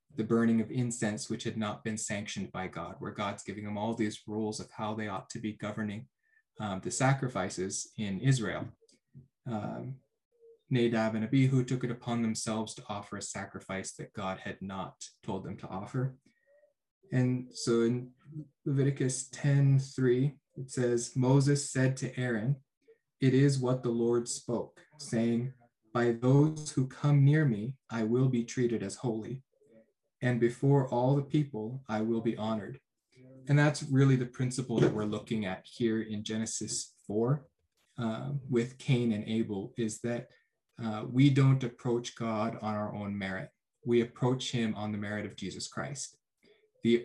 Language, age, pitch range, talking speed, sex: English, 20-39, 110-135 Hz, 165 wpm, male